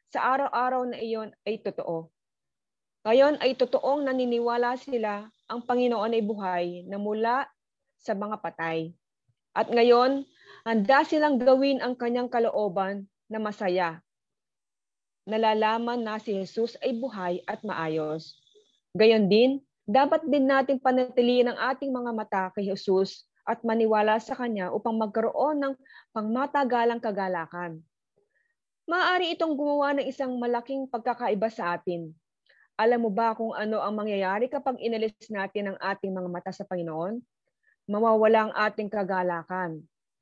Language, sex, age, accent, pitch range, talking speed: Filipino, female, 20-39, native, 180-240 Hz, 130 wpm